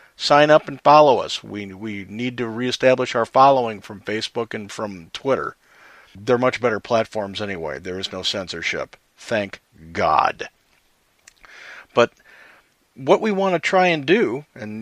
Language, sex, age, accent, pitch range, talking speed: English, male, 50-69, American, 110-140 Hz, 150 wpm